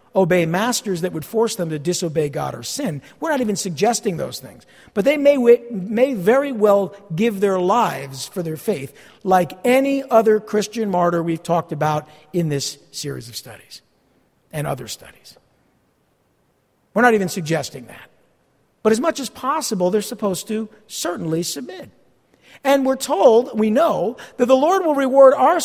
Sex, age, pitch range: male, 50-69, 170-245 Hz